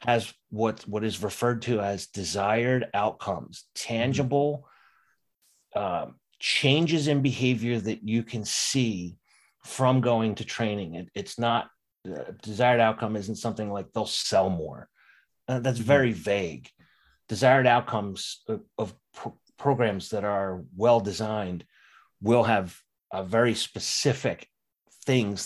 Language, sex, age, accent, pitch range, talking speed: English, male, 30-49, American, 100-120 Hz, 125 wpm